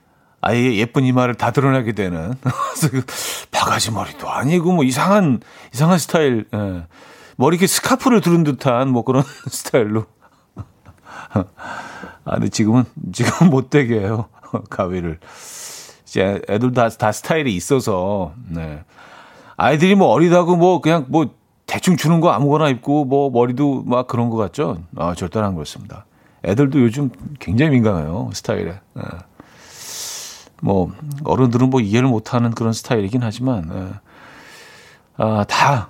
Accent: native